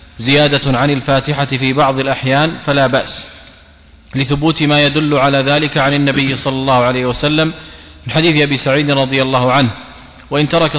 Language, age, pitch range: Arabic, 30-49, 135-150 Hz